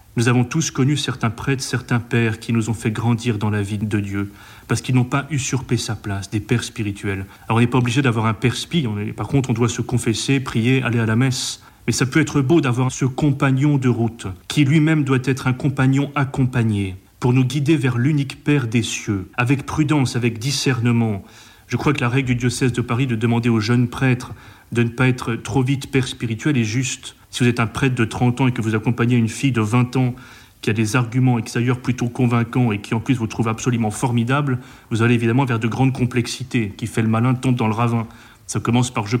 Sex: male